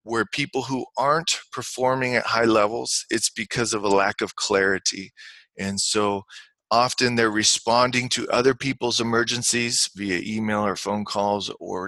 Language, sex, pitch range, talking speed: English, male, 105-125 Hz, 150 wpm